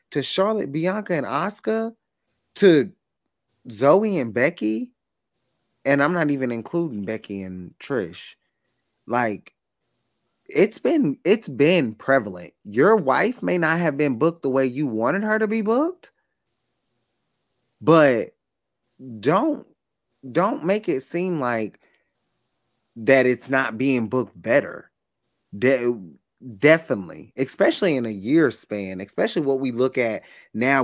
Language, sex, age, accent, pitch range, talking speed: English, male, 20-39, American, 110-145 Hz, 125 wpm